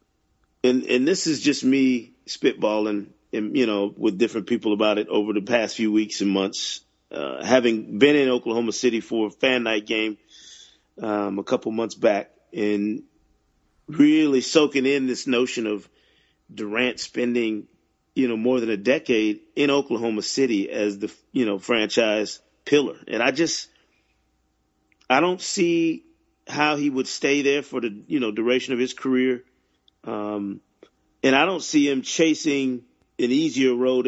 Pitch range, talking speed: 105-130 Hz, 160 wpm